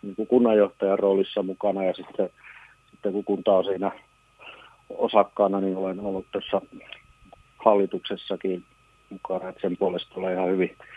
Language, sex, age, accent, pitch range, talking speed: Finnish, male, 30-49, native, 95-105 Hz, 135 wpm